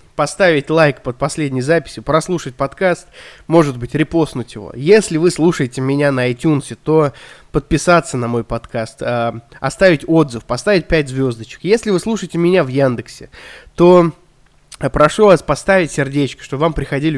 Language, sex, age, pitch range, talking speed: Russian, male, 20-39, 135-175 Hz, 145 wpm